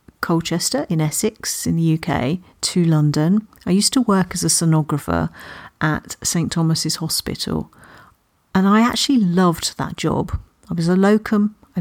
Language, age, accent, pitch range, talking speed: English, 50-69, British, 155-180 Hz, 145 wpm